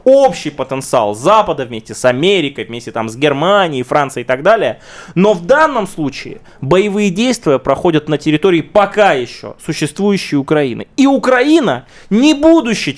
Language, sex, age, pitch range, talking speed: Russian, male, 20-39, 150-205 Hz, 145 wpm